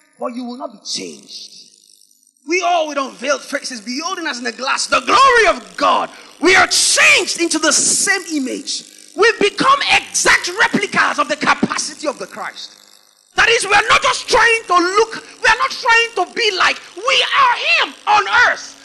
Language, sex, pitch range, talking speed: English, male, 275-370 Hz, 190 wpm